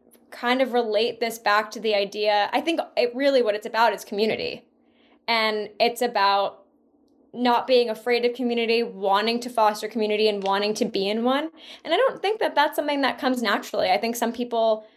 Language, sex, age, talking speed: English, female, 10-29, 195 wpm